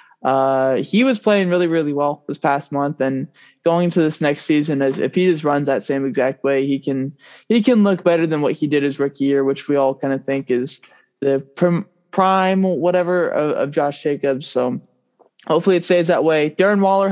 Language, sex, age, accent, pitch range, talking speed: English, male, 20-39, American, 140-180 Hz, 210 wpm